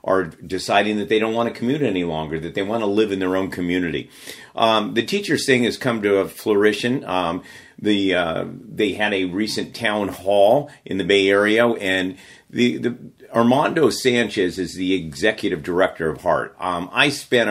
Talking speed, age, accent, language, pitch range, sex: 190 wpm, 50-69, American, English, 95-110 Hz, male